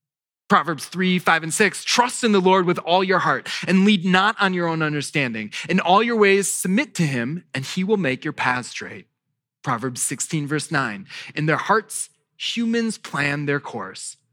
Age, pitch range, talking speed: 20-39, 145-205 Hz, 190 wpm